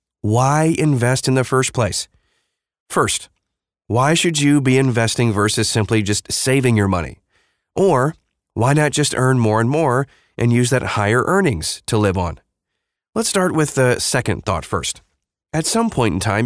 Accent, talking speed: American, 170 wpm